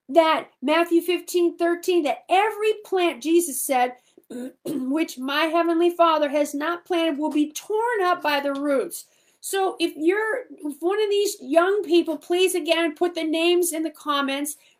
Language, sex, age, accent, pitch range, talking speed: English, female, 50-69, American, 300-375 Hz, 160 wpm